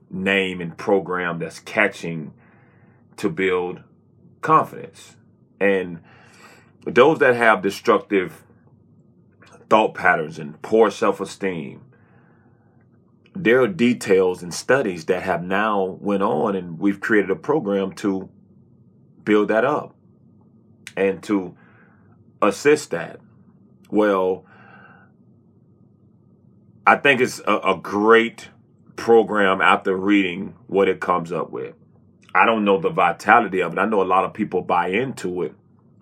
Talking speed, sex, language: 120 wpm, male, English